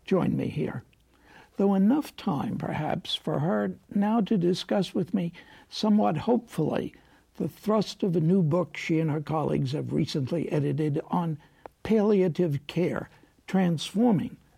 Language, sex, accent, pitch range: English, male, American, 160-205 Hz